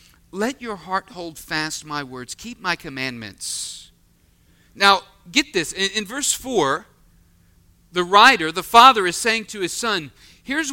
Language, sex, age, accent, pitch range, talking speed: English, male, 40-59, American, 125-205 Hz, 150 wpm